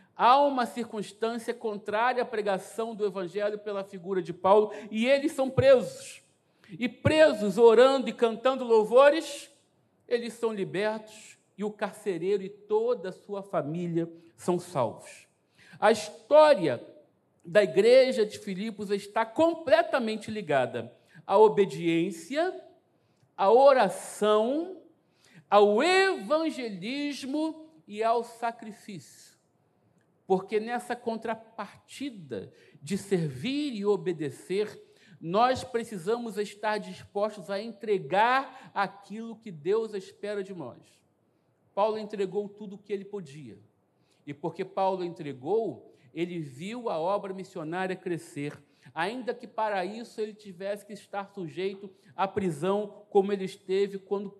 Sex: male